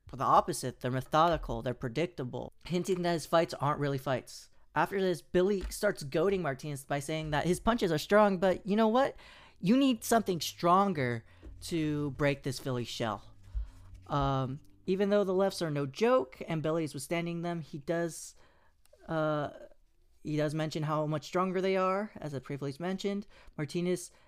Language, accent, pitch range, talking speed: English, American, 130-175 Hz, 165 wpm